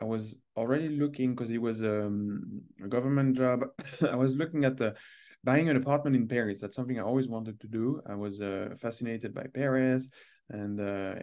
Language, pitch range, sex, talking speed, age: English, 105-135 Hz, male, 190 wpm, 20-39